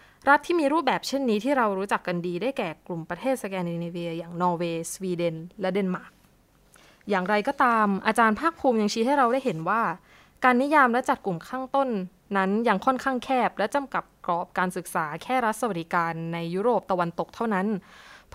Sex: female